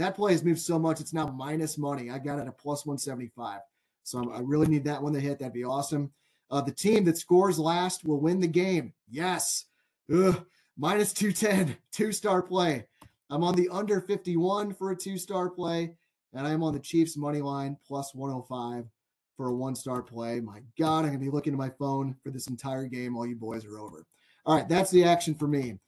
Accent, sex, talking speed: American, male, 220 wpm